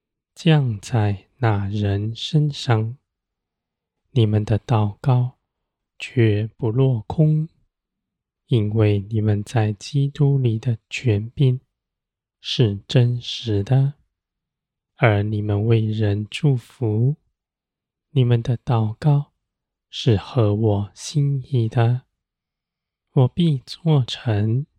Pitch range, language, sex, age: 105-135 Hz, Chinese, male, 20-39